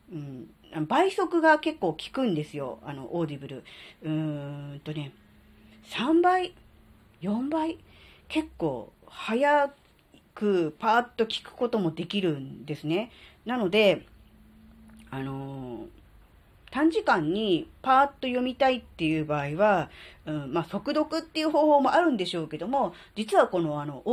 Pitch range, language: 150-235 Hz, Japanese